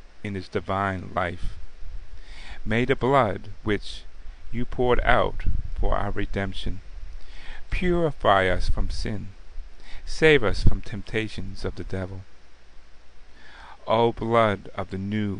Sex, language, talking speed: male, English, 115 wpm